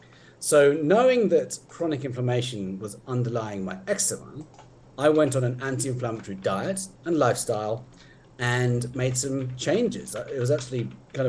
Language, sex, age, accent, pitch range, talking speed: English, male, 40-59, British, 110-135 Hz, 135 wpm